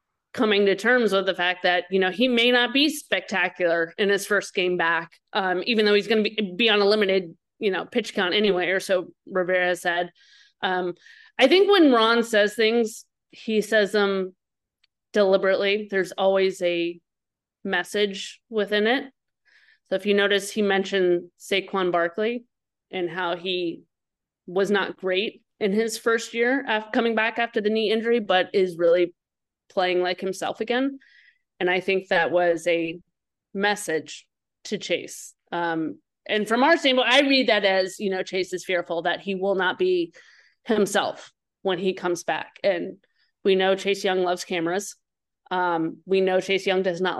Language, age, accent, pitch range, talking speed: English, 30-49, American, 180-220 Hz, 170 wpm